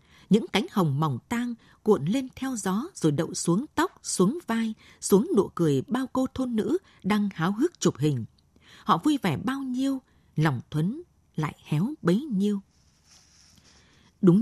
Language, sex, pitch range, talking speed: Vietnamese, female, 165-230 Hz, 160 wpm